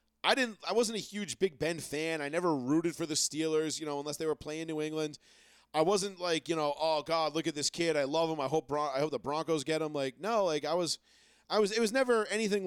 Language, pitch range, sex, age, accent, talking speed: English, 135-180 Hz, male, 30-49, American, 270 wpm